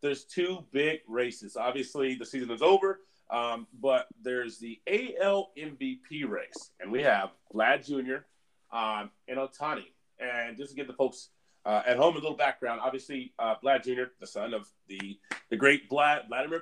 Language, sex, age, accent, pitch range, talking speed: English, male, 30-49, American, 125-170 Hz, 175 wpm